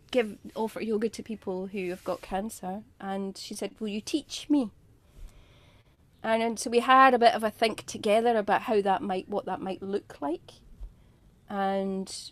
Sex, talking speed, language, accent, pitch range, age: female, 175 wpm, English, British, 185-225 Hz, 30-49